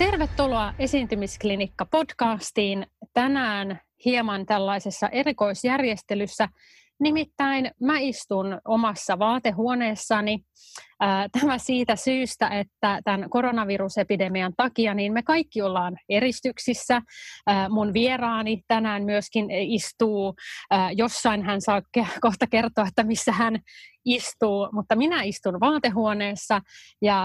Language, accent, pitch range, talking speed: Finnish, native, 200-245 Hz, 90 wpm